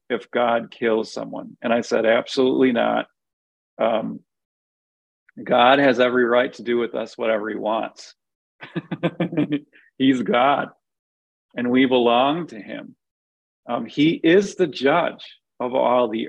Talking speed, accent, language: 135 wpm, American, English